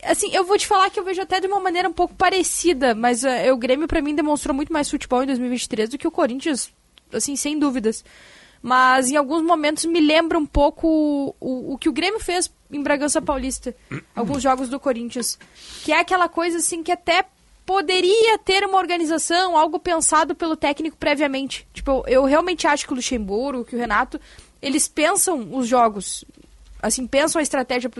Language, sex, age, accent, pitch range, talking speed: Portuguese, female, 10-29, Brazilian, 250-325 Hz, 195 wpm